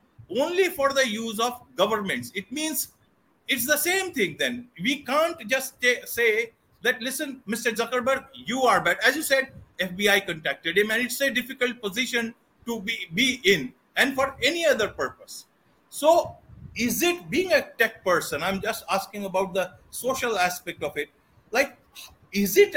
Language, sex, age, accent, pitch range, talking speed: English, male, 50-69, Indian, 200-270 Hz, 165 wpm